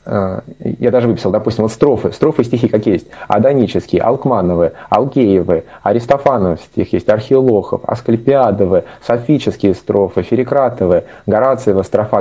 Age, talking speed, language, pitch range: 20-39, 120 wpm, Russian, 100-125 Hz